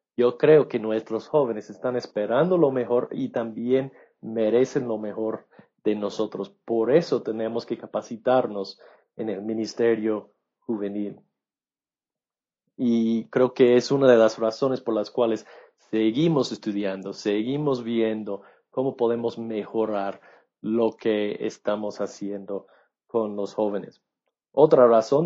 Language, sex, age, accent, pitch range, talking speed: English, male, 40-59, Mexican, 110-140 Hz, 125 wpm